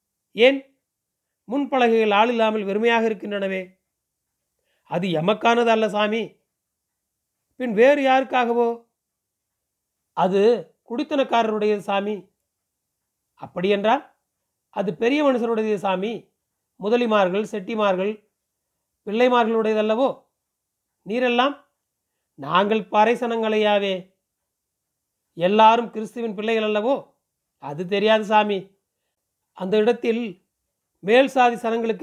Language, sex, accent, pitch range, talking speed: Tamil, male, native, 205-235 Hz, 75 wpm